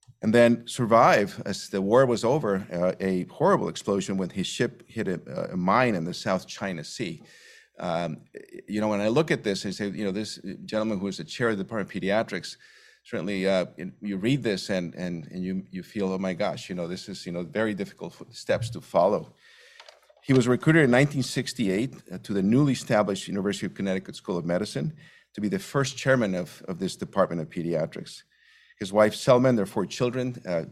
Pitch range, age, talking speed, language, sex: 95-130 Hz, 50-69, 205 wpm, English, male